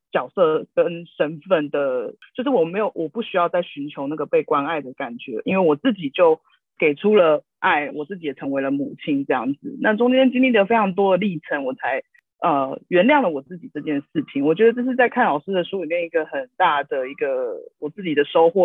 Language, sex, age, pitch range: Chinese, female, 30-49, 175-275 Hz